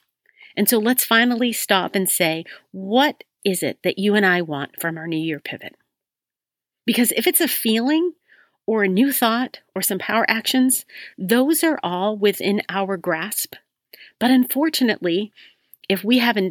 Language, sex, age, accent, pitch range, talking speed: English, female, 40-59, American, 180-240 Hz, 160 wpm